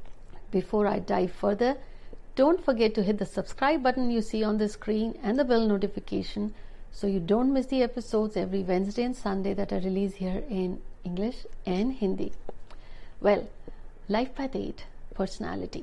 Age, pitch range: 60-79, 195-235 Hz